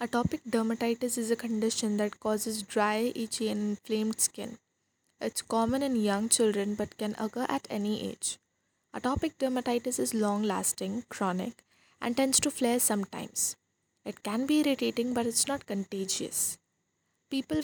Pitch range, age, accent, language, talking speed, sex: 215-250 Hz, 20-39, Indian, English, 145 wpm, female